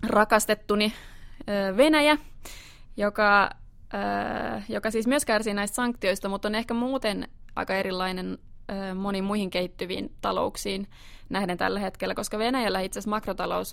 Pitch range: 185-215 Hz